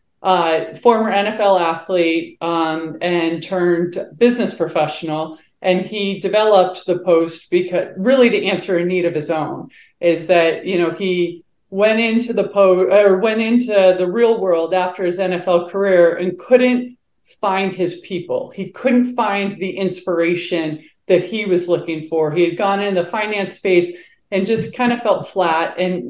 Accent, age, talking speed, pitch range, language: American, 30-49, 165 wpm, 170-205 Hz, English